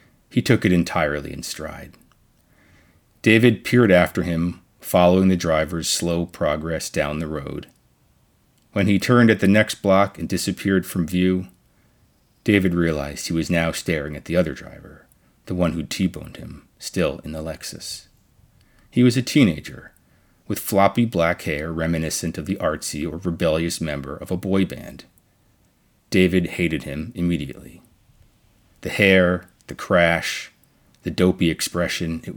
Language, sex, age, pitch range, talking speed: English, male, 30-49, 80-100 Hz, 145 wpm